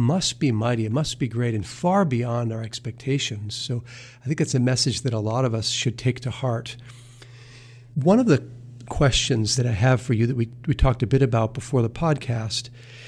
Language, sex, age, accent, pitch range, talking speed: English, male, 40-59, American, 120-135 Hz, 210 wpm